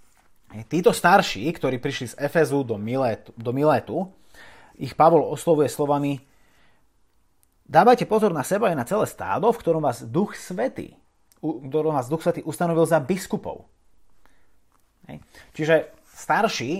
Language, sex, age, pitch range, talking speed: Slovak, male, 30-49, 110-155 Hz, 105 wpm